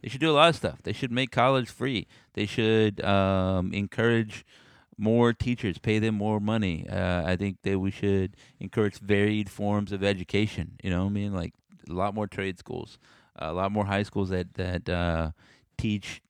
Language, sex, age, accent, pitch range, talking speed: English, male, 30-49, American, 95-115 Hz, 195 wpm